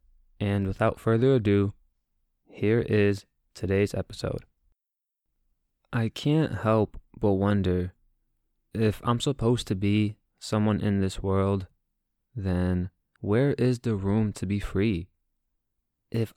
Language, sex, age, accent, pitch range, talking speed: English, male, 20-39, American, 95-115 Hz, 115 wpm